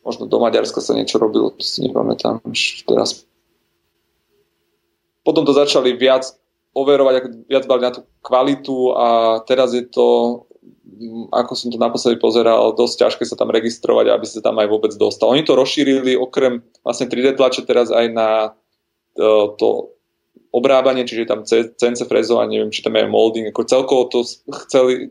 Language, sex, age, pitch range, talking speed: Slovak, male, 30-49, 115-130 Hz, 160 wpm